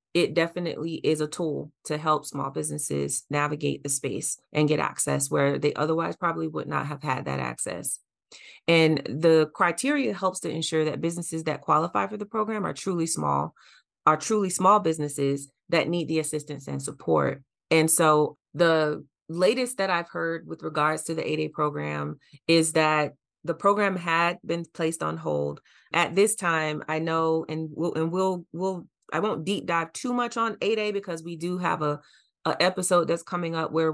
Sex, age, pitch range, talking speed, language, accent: female, 30-49, 150-170 Hz, 180 wpm, English, American